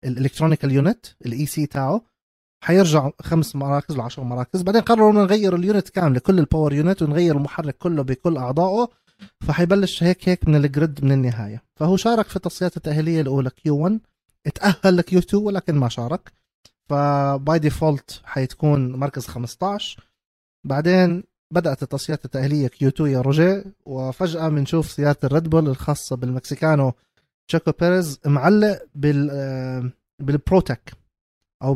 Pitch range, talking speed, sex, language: 135-175 Hz, 125 wpm, male, Arabic